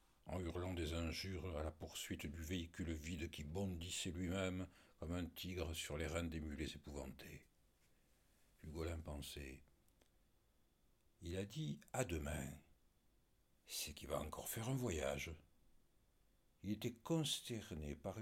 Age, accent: 60-79, French